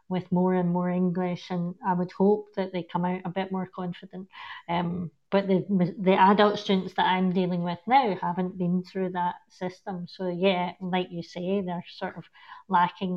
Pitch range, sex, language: 185-215 Hz, female, English